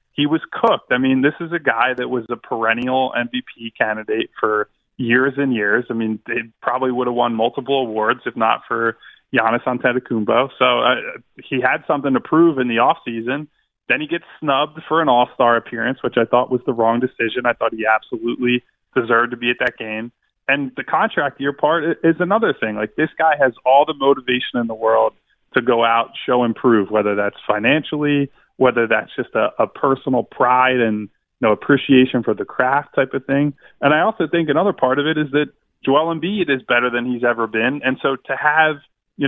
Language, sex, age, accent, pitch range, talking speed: English, male, 20-39, American, 115-140 Hz, 205 wpm